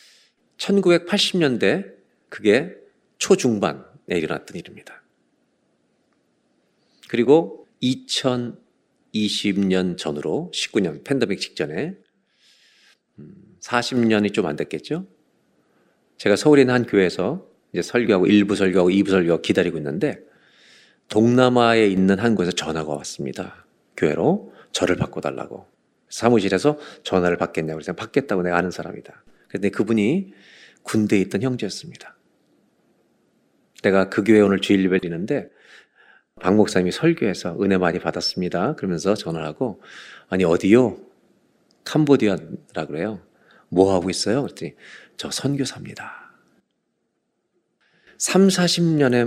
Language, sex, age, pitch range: Korean, male, 50-69, 95-140 Hz